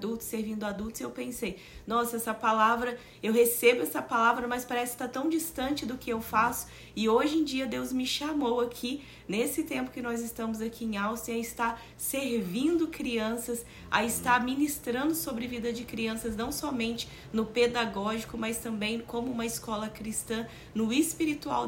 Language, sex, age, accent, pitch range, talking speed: Portuguese, female, 20-39, Brazilian, 220-255 Hz, 170 wpm